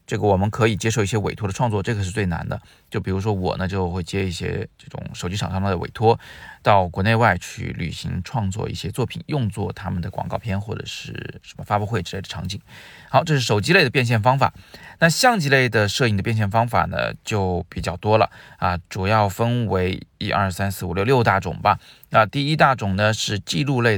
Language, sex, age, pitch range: Chinese, male, 20-39, 95-125 Hz